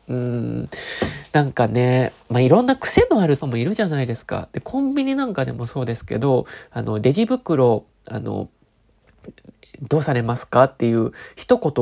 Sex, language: male, Japanese